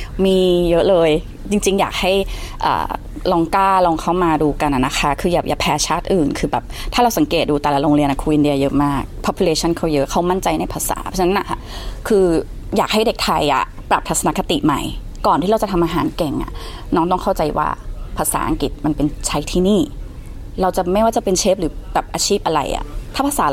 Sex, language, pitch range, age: female, Thai, 155-190 Hz, 20-39